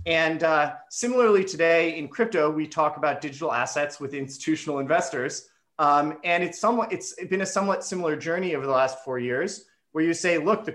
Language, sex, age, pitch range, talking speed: English, male, 30-49, 140-175 Hz, 190 wpm